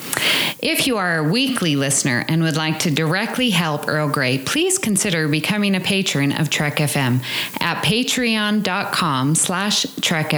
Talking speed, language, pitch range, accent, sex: 150 wpm, English, 145-205 Hz, American, female